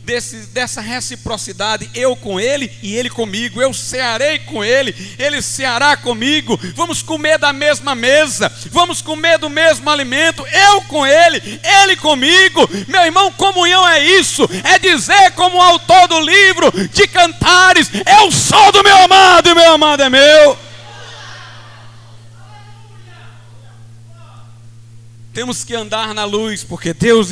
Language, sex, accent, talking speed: Portuguese, male, Brazilian, 135 wpm